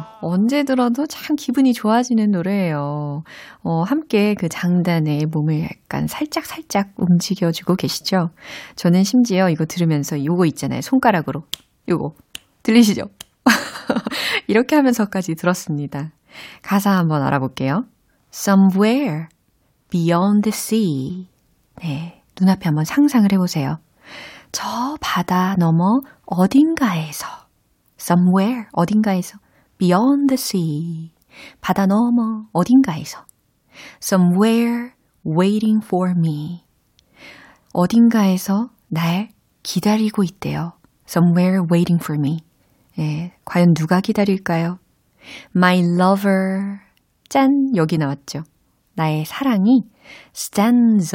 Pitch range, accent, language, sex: 160-215 Hz, native, Korean, female